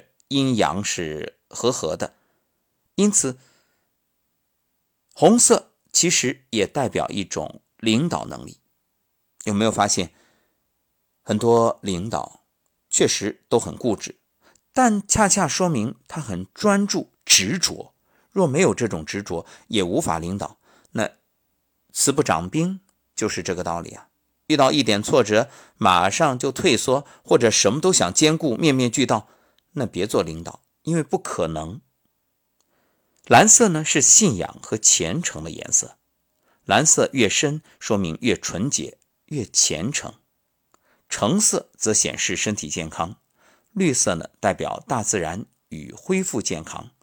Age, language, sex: 50-69, Chinese, male